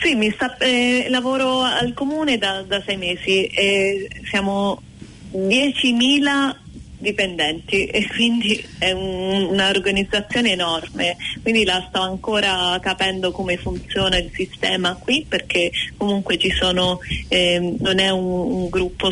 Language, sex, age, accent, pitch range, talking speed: Italian, female, 20-39, native, 180-200 Hz, 130 wpm